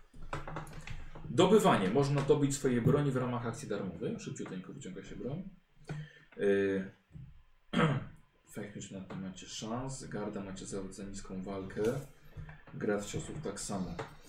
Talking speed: 120 wpm